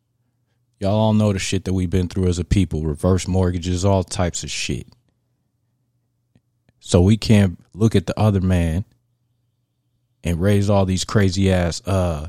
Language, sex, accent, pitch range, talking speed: English, male, American, 90-115 Hz, 160 wpm